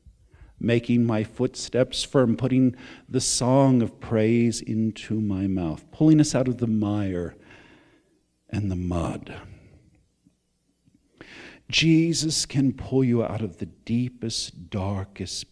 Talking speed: 115 wpm